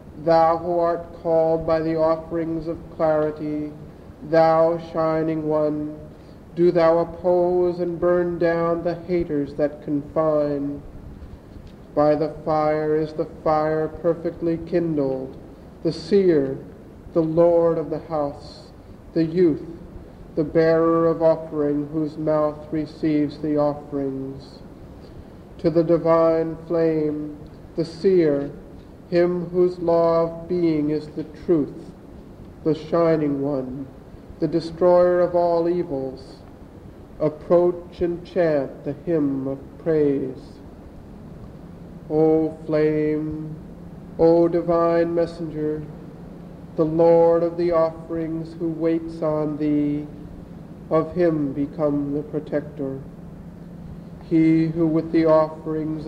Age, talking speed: 50-69, 110 wpm